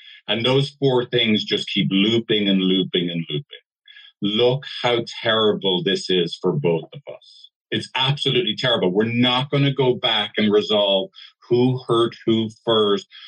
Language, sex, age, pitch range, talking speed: English, male, 50-69, 105-125 Hz, 160 wpm